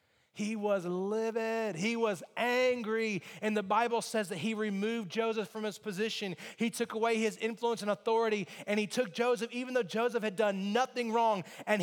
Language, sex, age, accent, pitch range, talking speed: English, male, 30-49, American, 220-255 Hz, 185 wpm